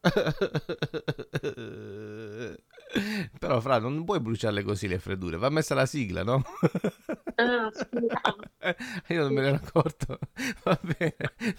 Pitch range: 125-180 Hz